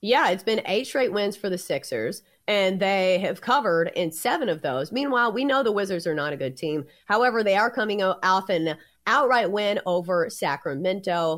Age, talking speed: 30-49, 195 wpm